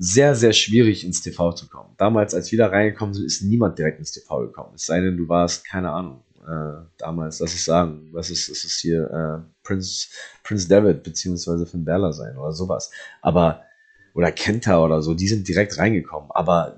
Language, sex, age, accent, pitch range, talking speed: German, male, 30-49, German, 85-110 Hz, 205 wpm